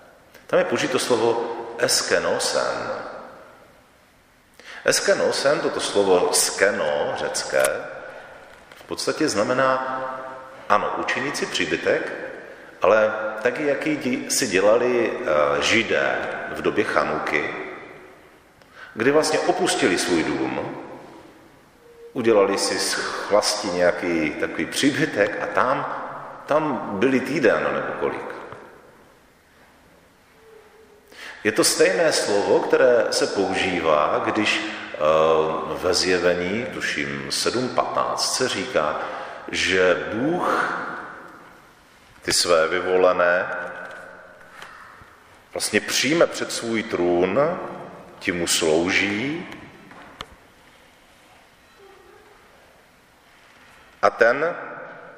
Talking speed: 80 wpm